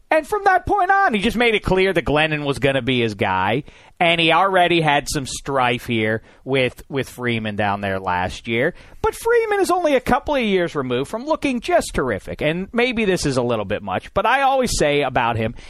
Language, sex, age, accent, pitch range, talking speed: English, male, 40-59, American, 145-215 Hz, 225 wpm